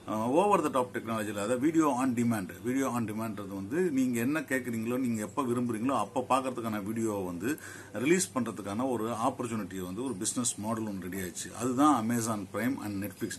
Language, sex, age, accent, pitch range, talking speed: Tamil, male, 50-69, native, 100-130 Hz, 170 wpm